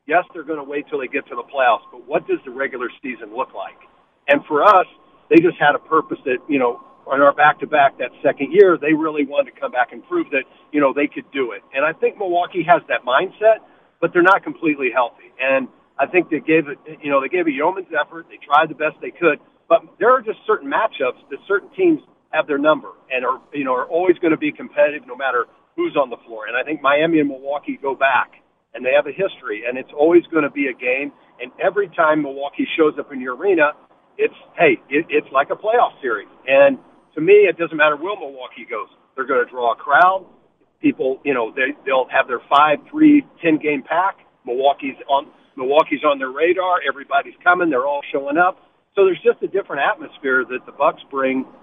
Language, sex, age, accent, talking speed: English, male, 50-69, American, 230 wpm